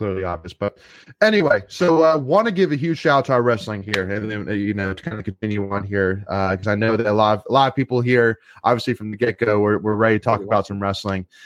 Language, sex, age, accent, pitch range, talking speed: English, male, 20-39, American, 100-130 Hz, 270 wpm